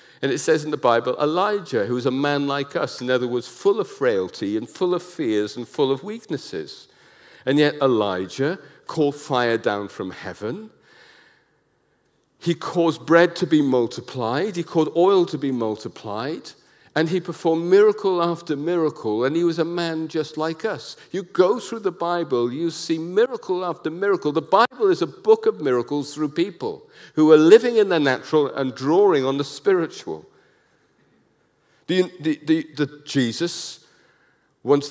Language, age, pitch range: English, 50-69, 135-180 Hz